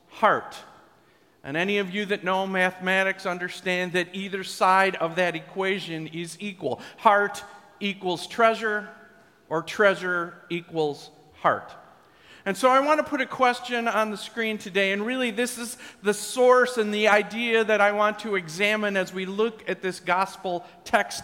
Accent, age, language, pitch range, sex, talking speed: American, 50-69, English, 175-215 Hz, male, 160 wpm